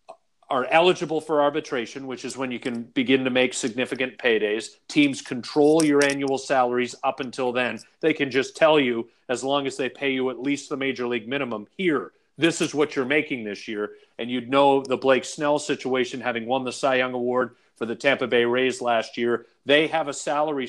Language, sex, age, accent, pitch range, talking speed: English, male, 40-59, American, 130-165 Hz, 205 wpm